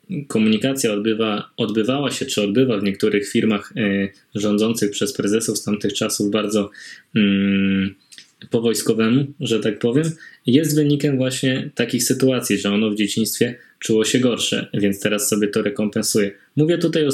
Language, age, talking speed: Polish, 20-39, 145 wpm